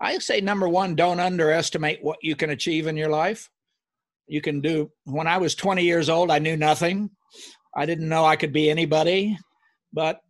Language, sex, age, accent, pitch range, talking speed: English, male, 60-79, American, 155-190 Hz, 190 wpm